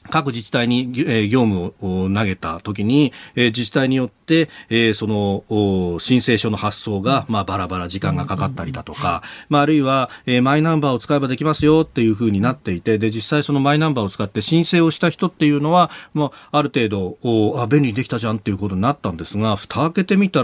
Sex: male